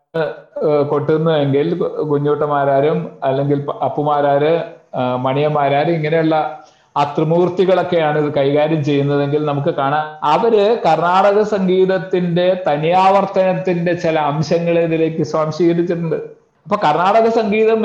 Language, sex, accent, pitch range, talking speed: Malayalam, male, native, 155-190 Hz, 80 wpm